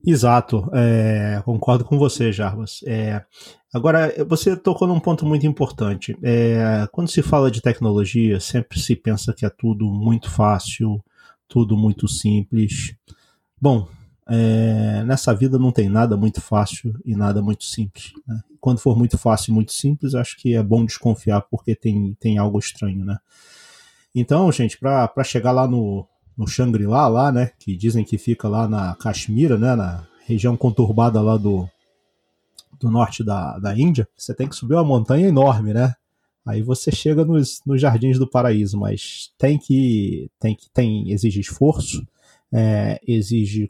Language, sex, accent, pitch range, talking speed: Portuguese, male, Brazilian, 105-130 Hz, 160 wpm